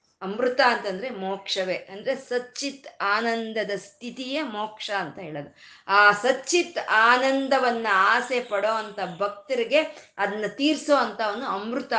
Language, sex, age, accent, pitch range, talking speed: Kannada, female, 20-39, native, 200-270 Hz, 100 wpm